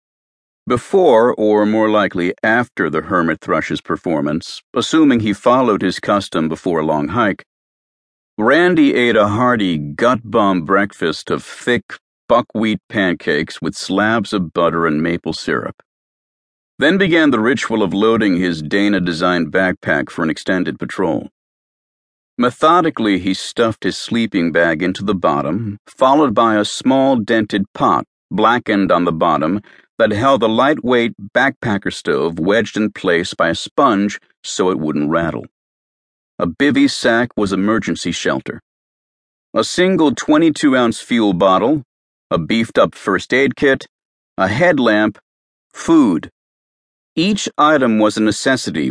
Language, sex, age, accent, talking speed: English, male, 50-69, American, 130 wpm